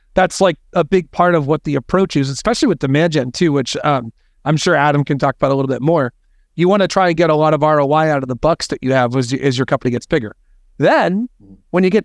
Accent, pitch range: American, 145-180 Hz